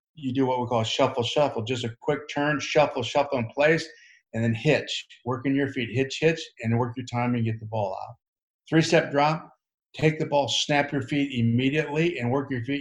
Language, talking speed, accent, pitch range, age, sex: English, 215 wpm, American, 120-150 Hz, 50-69, male